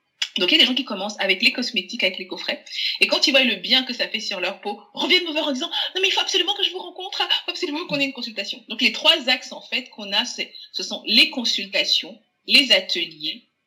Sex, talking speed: female, 270 wpm